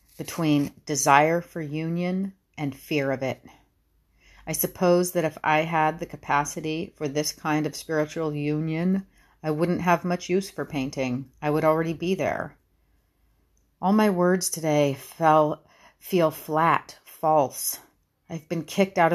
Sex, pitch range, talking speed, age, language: female, 145-170 Hz, 145 wpm, 40-59, English